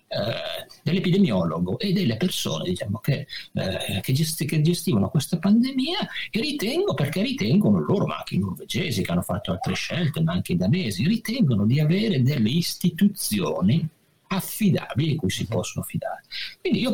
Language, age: Italian, 50-69